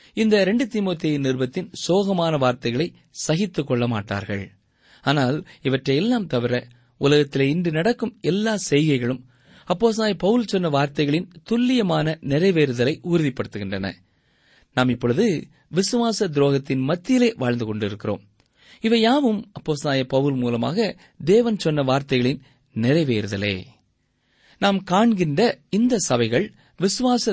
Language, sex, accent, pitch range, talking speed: Tamil, male, native, 120-195 Hz, 100 wpm